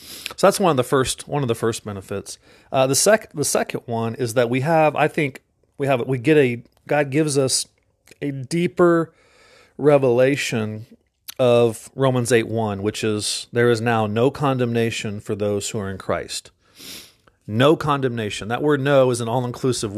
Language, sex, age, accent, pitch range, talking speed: English, male, 40-59, American, 115-150 Hz, 175 wpm